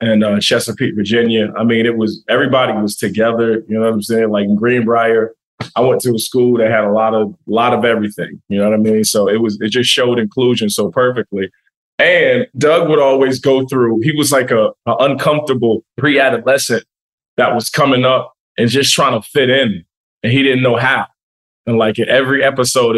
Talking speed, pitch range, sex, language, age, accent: 210 wpm, 105-120 Hz, male, English, 20-39, American